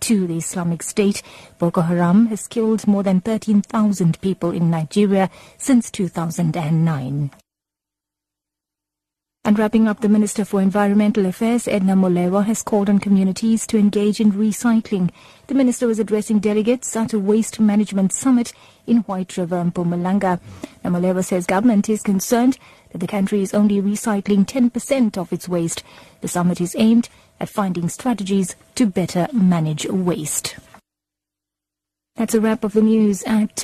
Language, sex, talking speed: English, female, 145 wpm